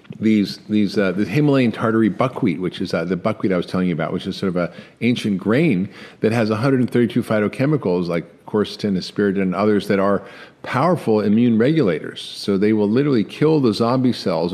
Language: English